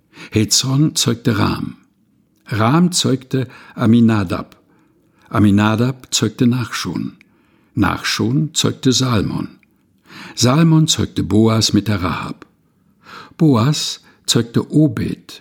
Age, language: 60-79, German